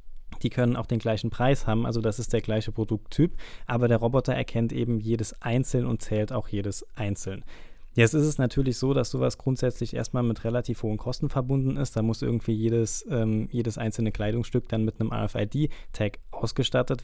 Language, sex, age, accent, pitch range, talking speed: German, male, 20-39, German, 110-125 Hz, 185 wpm